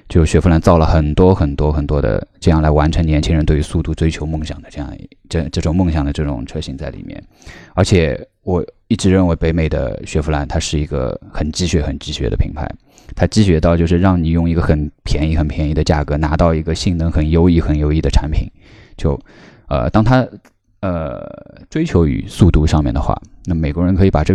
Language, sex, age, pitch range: Chinese, male, 20-39, 75-90 Hz